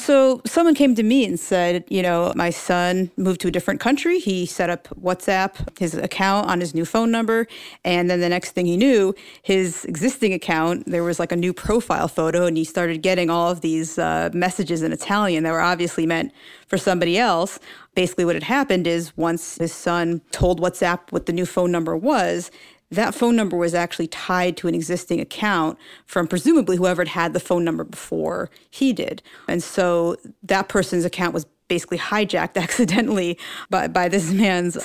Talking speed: 195 wpm